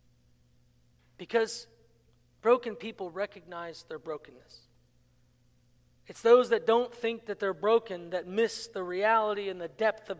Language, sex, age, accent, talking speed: English, male, 40-59, American, 130 wpm